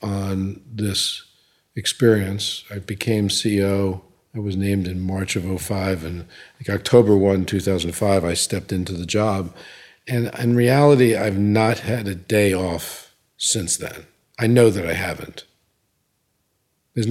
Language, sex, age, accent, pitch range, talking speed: English, male, 50-69, American, 95-115 Hz, 135 wpm